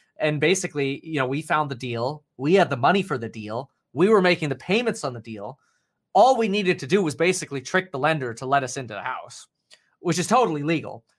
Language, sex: English, male